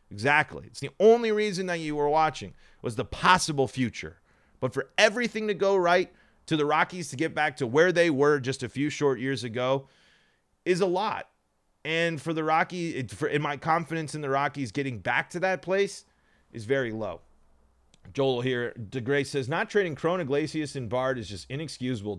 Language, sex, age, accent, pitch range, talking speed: English, male, 30-49, American, 130-175 Hz, 185 wpm